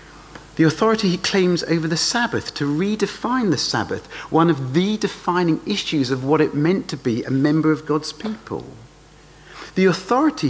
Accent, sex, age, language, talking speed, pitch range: British, male, 50-69, English, 165 wpm, 140-200 Hz